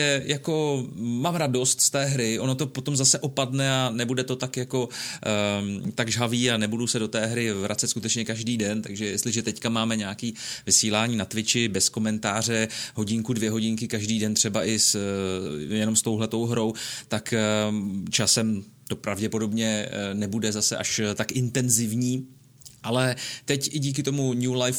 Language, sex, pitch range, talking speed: Czech, male, 105-125 Hz, 165 wpm